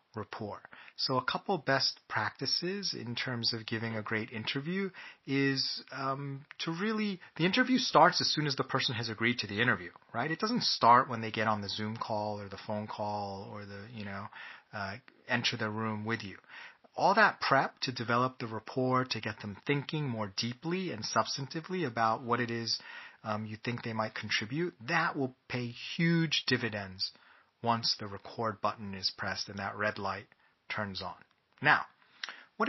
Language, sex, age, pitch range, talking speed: English, male, 30-49, 110-135 Hz, 180 wpm